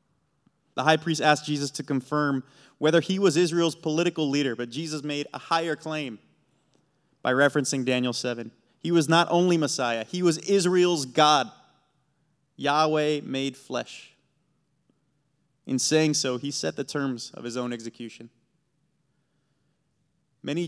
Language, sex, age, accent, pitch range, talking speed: English, male, 20-39, American, 125-155 Hz, 135 wpm